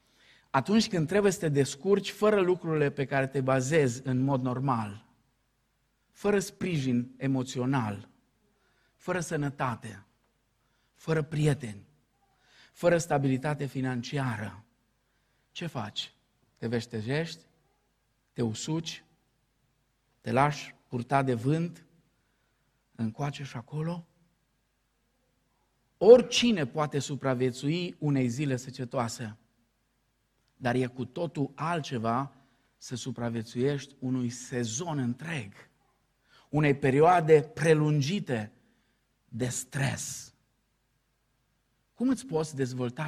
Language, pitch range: Romanian, 125-150 Hz